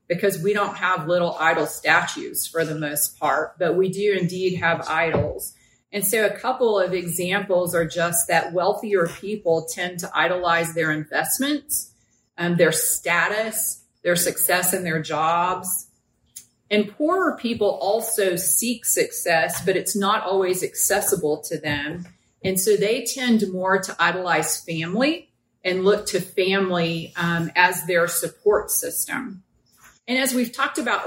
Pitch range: 170-205 Hz